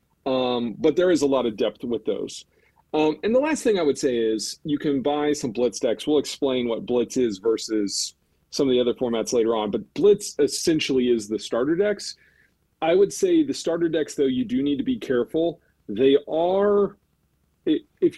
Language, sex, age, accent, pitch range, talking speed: English, male, 40-59, American, 120-190 Hz, 200 wpm